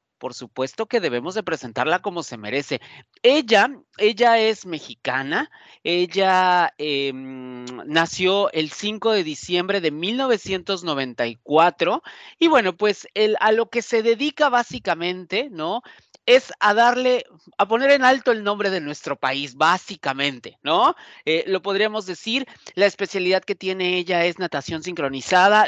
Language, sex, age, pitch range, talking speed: Spanish, male, 40-59, 155-205 Hz, 135 wpm